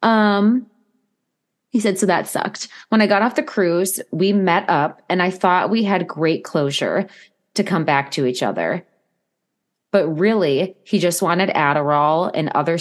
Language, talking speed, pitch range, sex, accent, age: English, 170 wpm, 165-210 Hz, female, American, 20-39